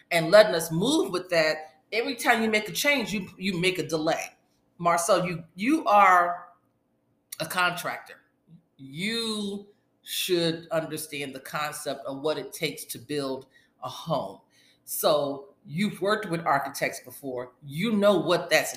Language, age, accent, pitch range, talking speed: English, 40-59, American, 155-205 Hz, 145 wpm